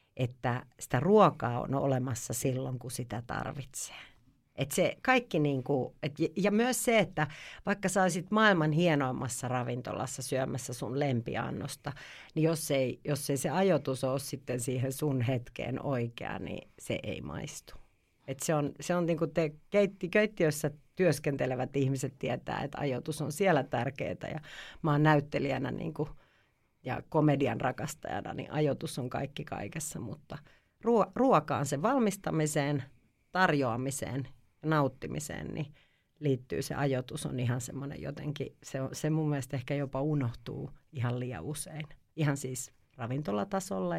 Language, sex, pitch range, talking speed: Finnish, female, 130-155 Hz, 140 wpm